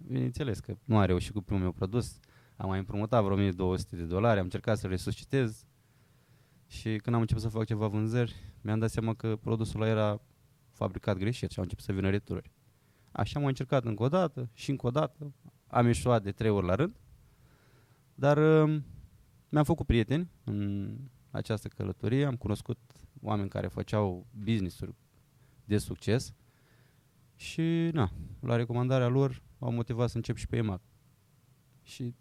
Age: 20-39